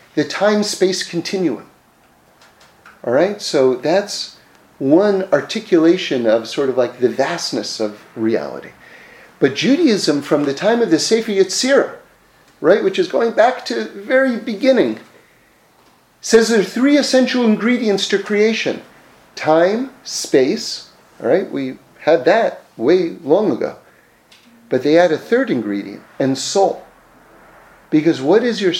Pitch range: 170-255 Hz